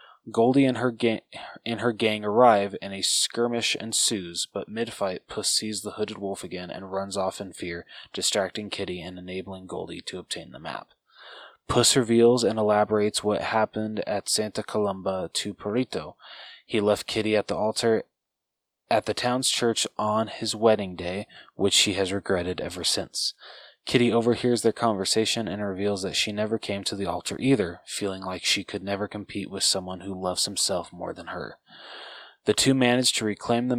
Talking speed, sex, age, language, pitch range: 170 wpm, male, 20-39, English, 95-115 Hz